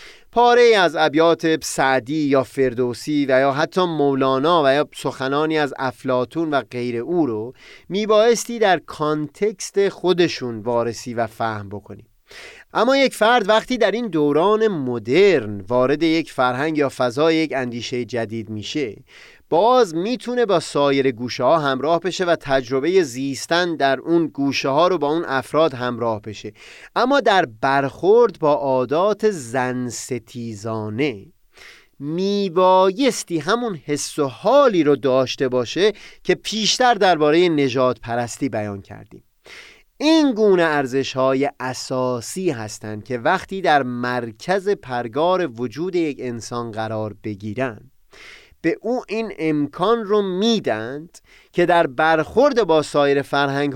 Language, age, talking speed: Persian, 30-49, 130 wpm